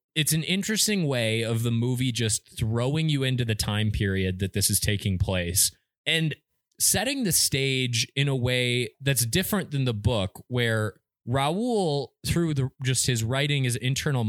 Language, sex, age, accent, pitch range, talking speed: English, male, 20-39, American, 105-135 Hz, 170 wpm